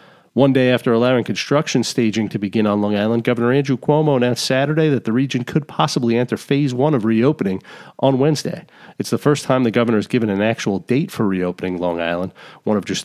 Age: 40-59